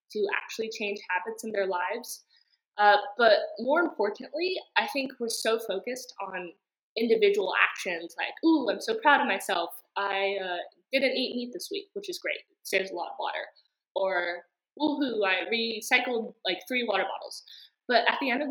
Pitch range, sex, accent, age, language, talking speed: 185-270 Hz, female, American, 20-39, English, 180 wpm